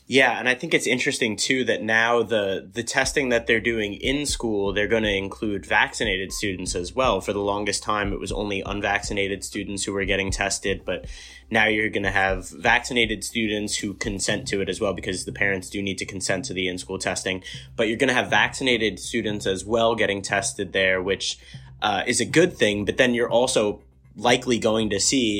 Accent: American